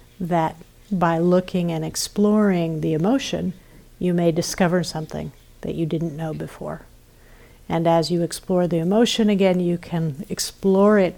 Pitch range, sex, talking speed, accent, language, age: 165-195 Hz, female, 145 wpm, American, English, 50-69